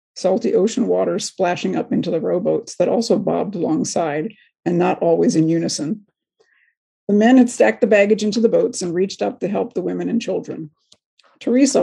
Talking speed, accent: 185 wpm, American